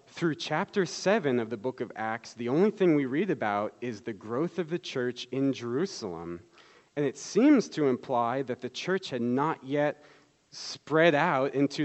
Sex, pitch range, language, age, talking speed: male, 115-150 Hz, English, 40-59, 180 wpm